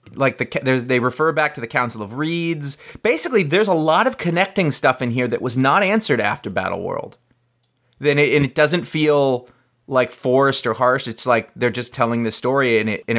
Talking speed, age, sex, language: 215 wpm, 30-49, male, English